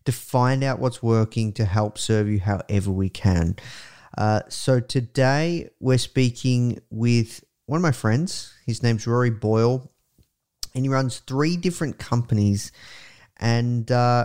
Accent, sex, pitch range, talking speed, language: Australian, male, 110-130 Hz, 140 wpm, English